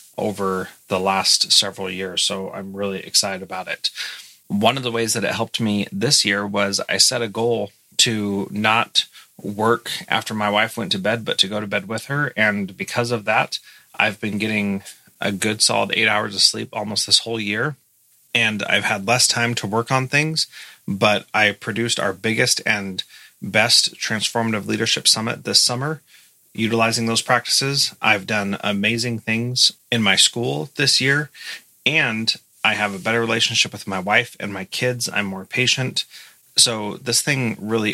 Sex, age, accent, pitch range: male, 30-49, American, 100-120 Hz